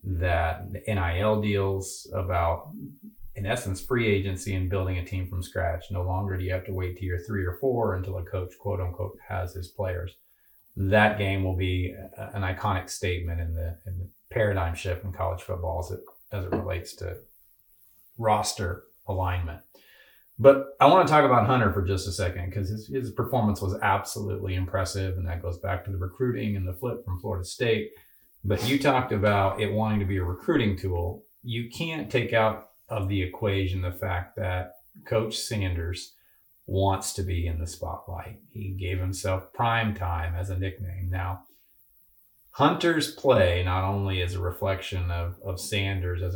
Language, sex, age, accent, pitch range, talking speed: English, male, 30-49, American, 90-110 Hz, 175 wpm